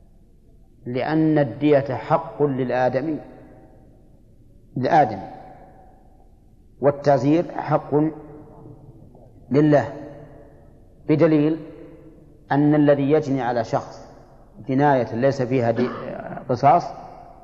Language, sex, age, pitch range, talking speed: Arabic, male, 40-59, 130-150 Hz, 60 wpm